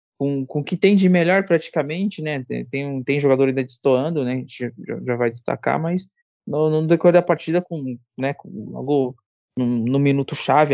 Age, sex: 20-39, male